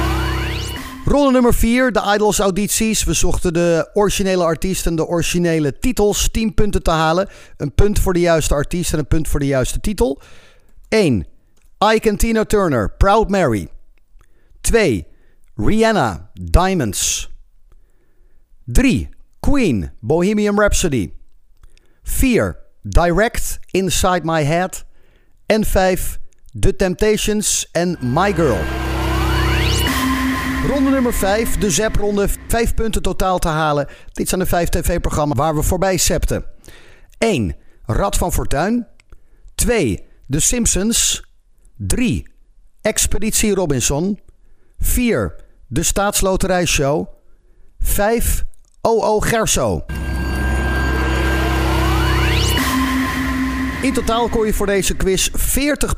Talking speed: 110 wpm